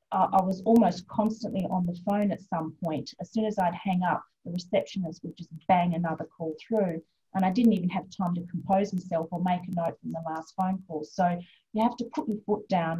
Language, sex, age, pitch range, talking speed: English, female, 30-49, 180-230 Hz, 230 wpm